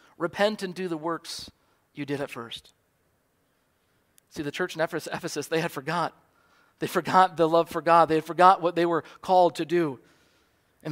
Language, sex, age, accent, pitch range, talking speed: English, male, 50-69, American, 165-225 Hz, 175 wpm